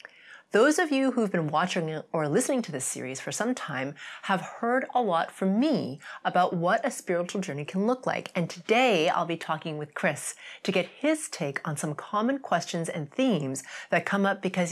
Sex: female